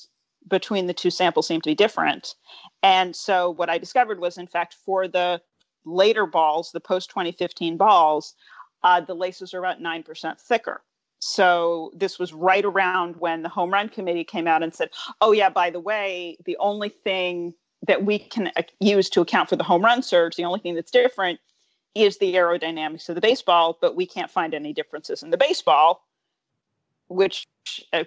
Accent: American